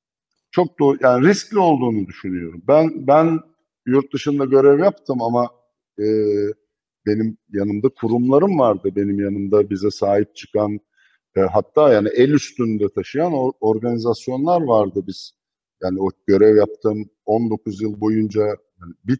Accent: native